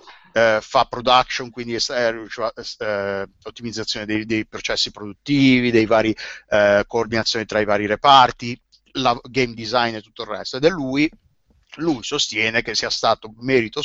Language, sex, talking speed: Italian, male, 145 wpm